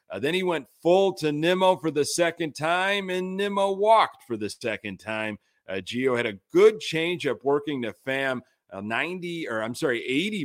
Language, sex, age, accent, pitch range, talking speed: English, male, 40-59, American, 115-170 Hz, 190 wpm